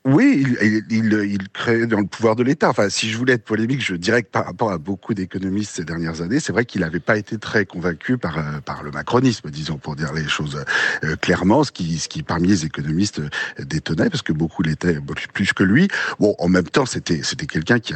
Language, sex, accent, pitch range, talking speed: French, male, French, 85-120 Hz, 230 wpm